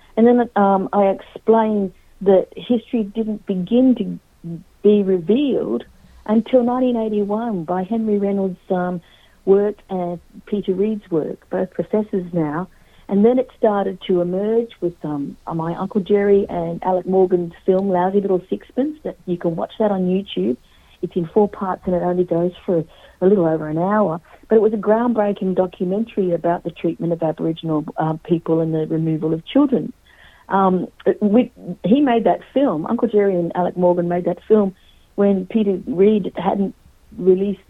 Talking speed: 160 wpm